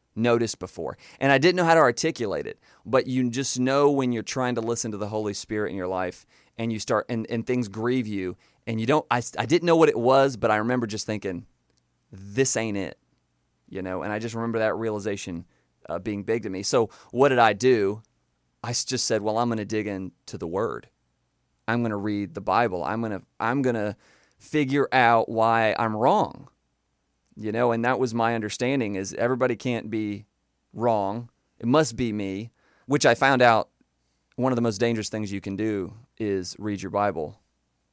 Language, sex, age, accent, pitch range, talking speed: English, male, 30-49, American, 100-120 Hz, 205 wpm